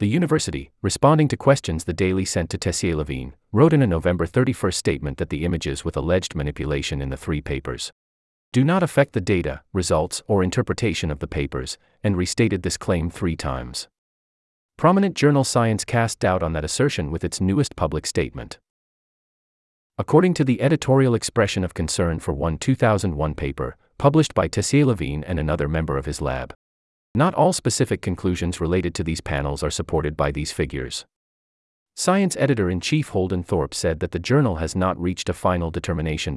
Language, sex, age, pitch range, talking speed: English, male, 30-49, 75-115 Hz, 170 wpm